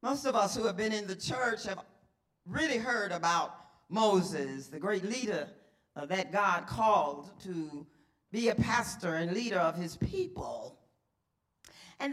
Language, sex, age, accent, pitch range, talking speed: English, female, 40-59, American, 150-225 Hz, 150 wpm